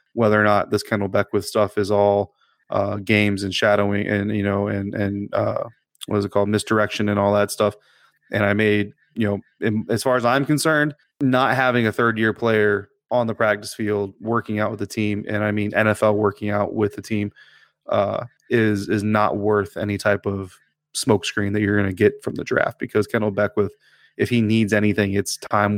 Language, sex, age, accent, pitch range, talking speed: English, male, 20-39, American, 100-110 Hz, 205 wpm